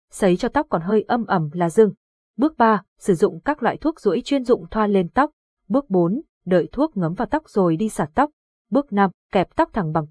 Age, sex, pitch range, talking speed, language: 20-39, female, 190-265 Hz, 230 wpm, Vietnamese